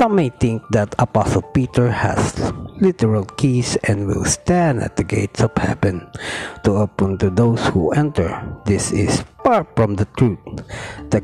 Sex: male